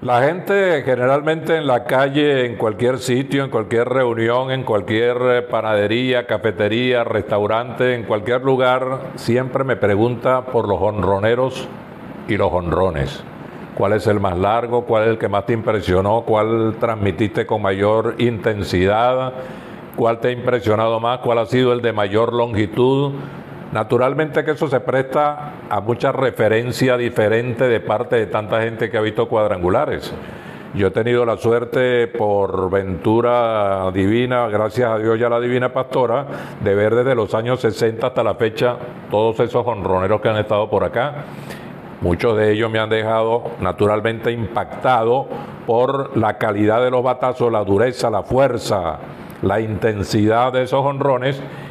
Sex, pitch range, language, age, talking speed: male, 110-125 Hz, Spanish, 50-69, 155 wpm